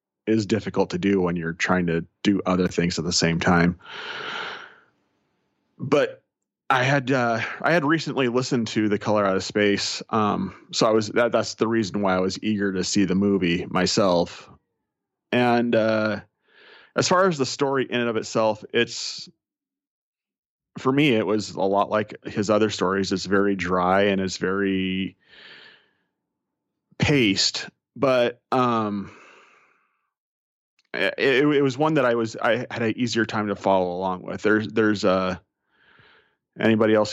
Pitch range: 95-115 Hz